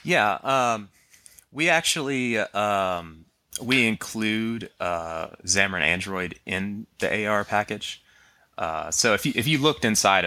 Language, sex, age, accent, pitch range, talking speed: English, male, 30-49, American, 80-105 Hz, 135 wpm